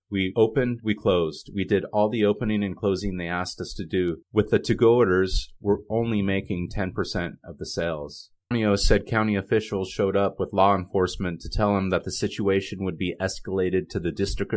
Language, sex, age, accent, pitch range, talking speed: English, male, 30-49, American, 90-105 Hz, 200 wpm